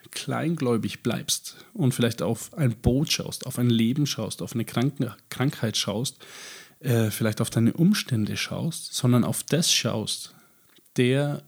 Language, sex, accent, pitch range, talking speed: German, male, German, 115-145 Hz, 140 wpm